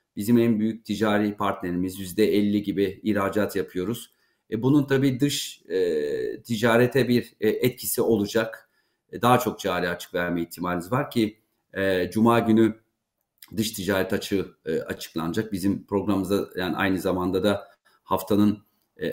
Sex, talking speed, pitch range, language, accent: male, 140 wpm, 100-120 Hz, Turkish, native